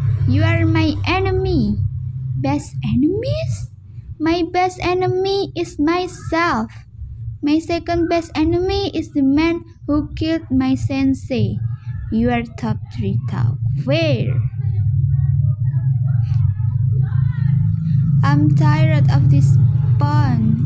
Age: 20-39